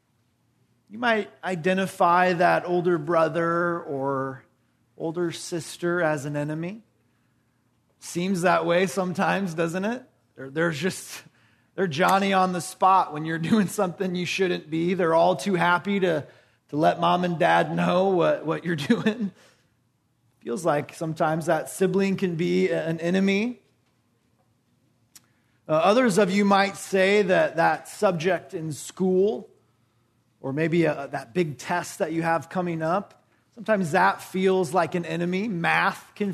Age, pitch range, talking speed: 30-49, 135-190 Hz, 145 wpm